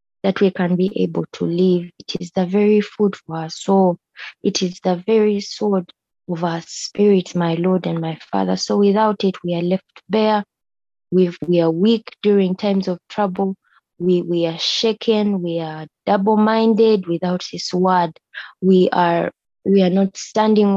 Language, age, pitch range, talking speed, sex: English, 20-39, 175-205 Hz, 170 wpm, female